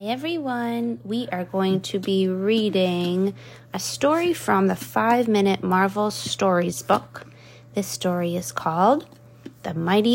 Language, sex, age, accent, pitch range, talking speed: English, female, 30-49, American, 165-210 Hz, 130 wpm